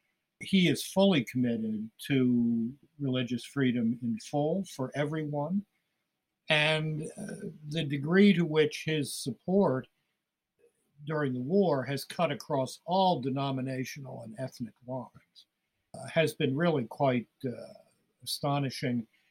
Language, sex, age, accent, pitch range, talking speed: English, male, 60-79, American, 125-170 Hz, 115 wpm